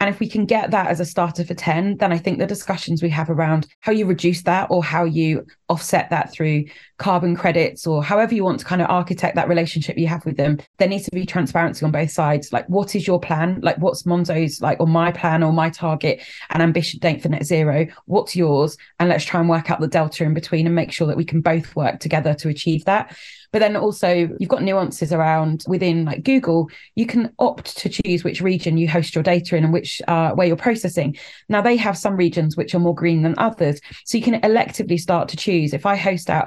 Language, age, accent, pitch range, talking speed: English, 20-39, British, 160-190 Hz, 245 wpm